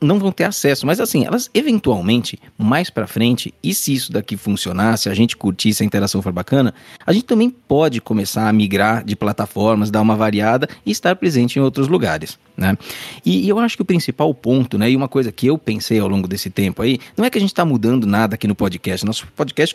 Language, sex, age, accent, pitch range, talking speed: Portuguese, male, 20-39, Brazilian, 105-145 Hz, 230 wpm